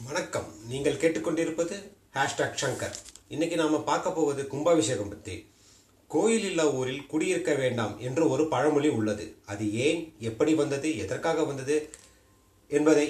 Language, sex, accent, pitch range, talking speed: Tamil, male, native, 115-165 Hz, 120 wpm